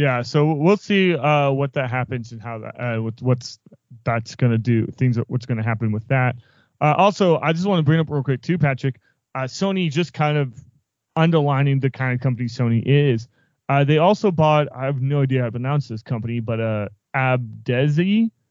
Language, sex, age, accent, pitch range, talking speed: English, male, 30-49, American, 120-145 Hz, 205 wpm